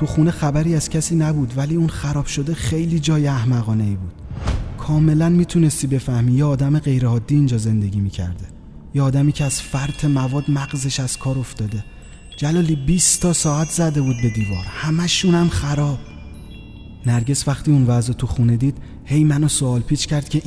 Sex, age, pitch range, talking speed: male, 30-49, 115-150 Hz, 165 wpm